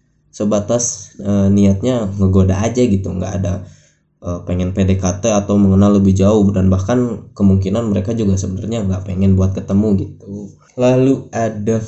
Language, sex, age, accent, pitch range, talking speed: Indonesian, male, 20-39, native, 95-115 Hz, 140 wpm